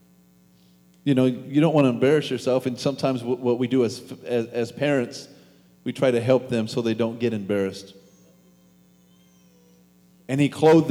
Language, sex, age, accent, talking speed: English, male, 40-59, American, 165 wpm